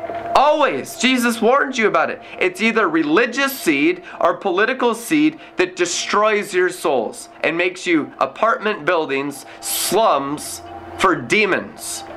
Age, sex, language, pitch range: 30-49, male, English, 185-250 Hz